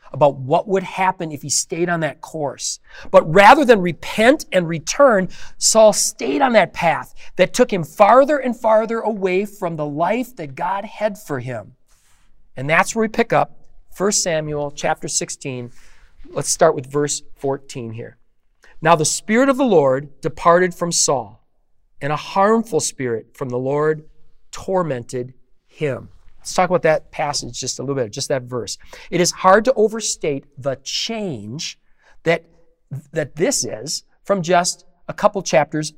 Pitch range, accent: 145-200 Hz, American